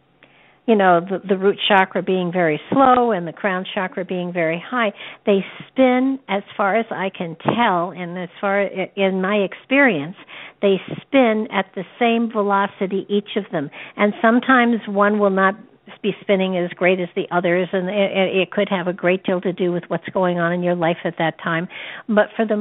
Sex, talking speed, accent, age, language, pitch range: female, 195 wpm, American, 60-79, English, 180-210 Hz